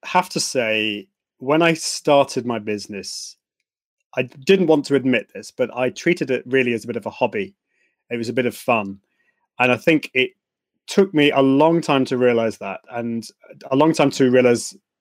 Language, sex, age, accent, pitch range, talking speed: English, male, 30-49, British, 120-150 Hz, 195 wpm